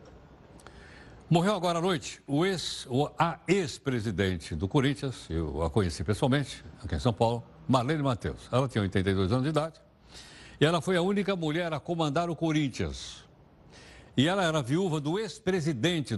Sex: male